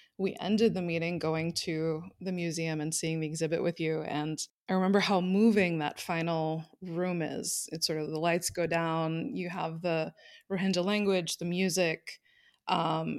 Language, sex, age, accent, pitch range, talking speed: English, female, 20-39, American, 165-195 Hz, 175 wpm